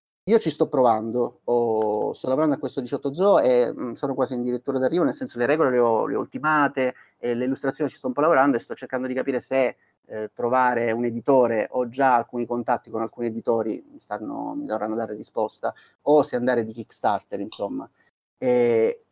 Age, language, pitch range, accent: 30-49, Italian, 120-150 Hz, native